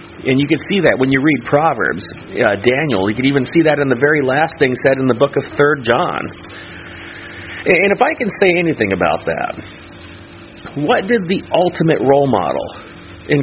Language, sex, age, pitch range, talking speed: English, male, 40-59, 115-155 Hz, 190 wpm